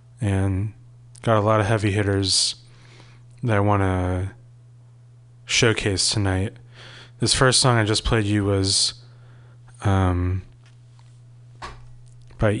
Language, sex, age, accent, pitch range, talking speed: English, male, 20-39, American, 100-120 Hz, 110 wpm